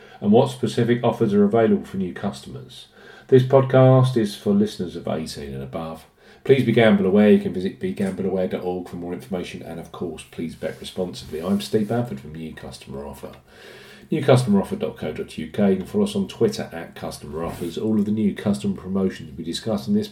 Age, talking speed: 40-59, 185 wpm